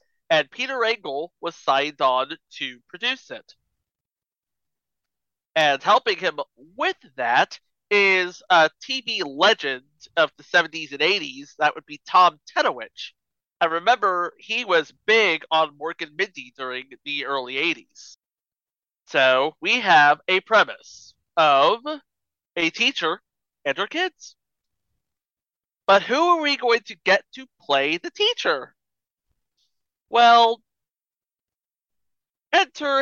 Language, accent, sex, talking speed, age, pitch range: English, American, male, 120 wpm, 30-49, 165-255 Hz